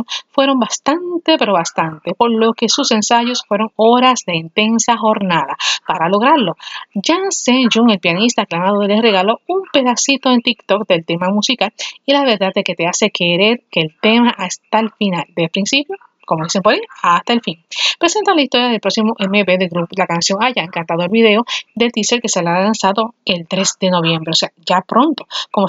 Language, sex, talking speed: Spanish, female, 195 wpm